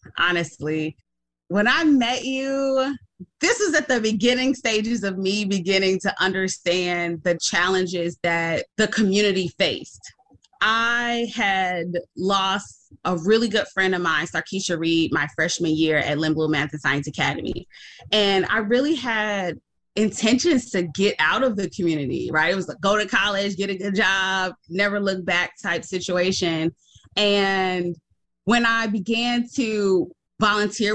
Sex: female